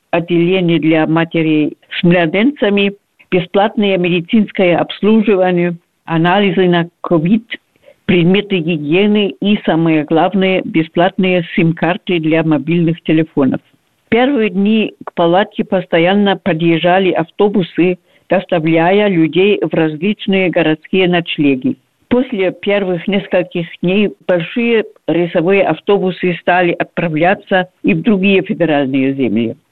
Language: Russian